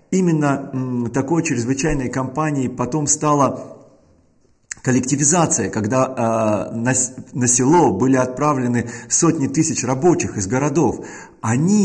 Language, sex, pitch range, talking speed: Russian, male, 120-155 Hz, 100 wpm